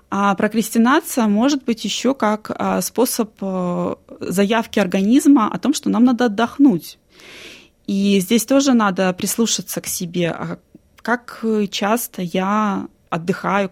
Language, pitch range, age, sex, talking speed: Russian, 190-235 Hz, 20-39, female, 115 wpm